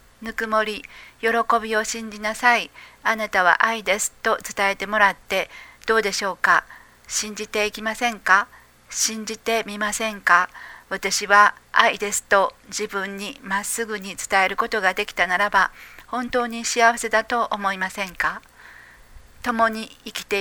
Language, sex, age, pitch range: Japanese, female, 50-69, 200-230 Hz